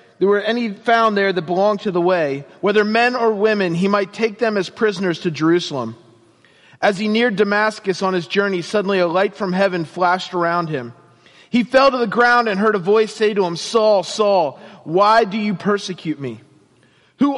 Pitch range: 160-215 Hz